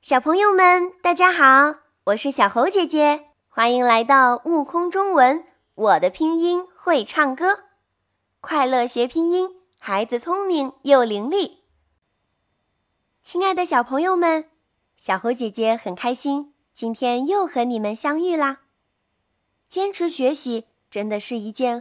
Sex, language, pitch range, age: female, Chinese, 220-345 Hz, 20-39